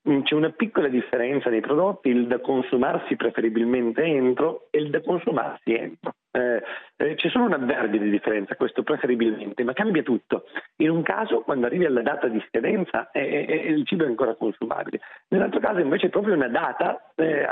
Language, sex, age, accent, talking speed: Italian, male, 40-59, native, 175 wpm